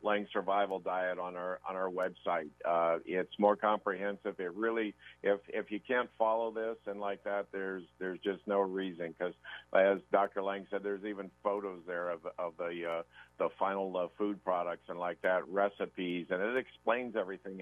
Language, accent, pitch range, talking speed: English, American, 95-110 Hz, 185 wpm